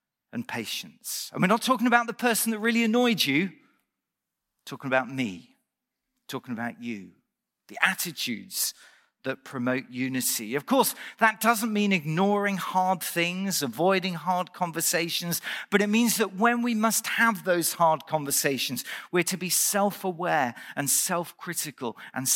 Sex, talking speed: male, 140 wpm